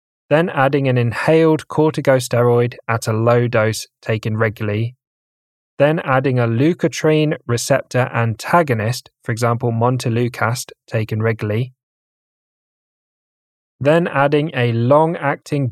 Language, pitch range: English, 115-140 Hz